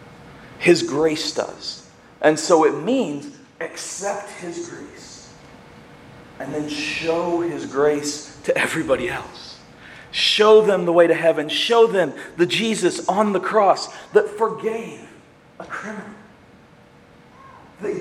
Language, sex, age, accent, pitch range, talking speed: English, male, 40-59, American, 175-225 Hz, 120 wpm